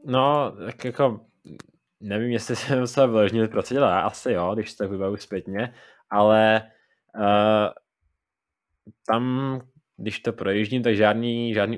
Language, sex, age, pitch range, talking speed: Czech, male, 20-39, 105-115 Hz, 130 wpm